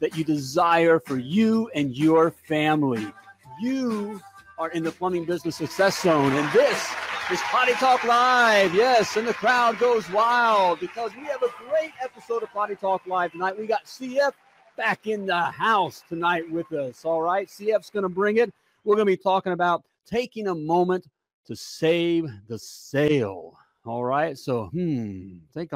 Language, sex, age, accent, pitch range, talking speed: English, male, 40-59, American, 145-205 Hz, 170 wpm